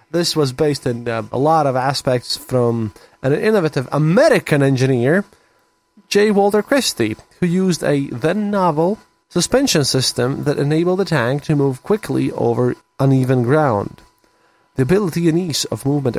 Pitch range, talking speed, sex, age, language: 115-150 Hz, 140 wpm, male, 20-39, English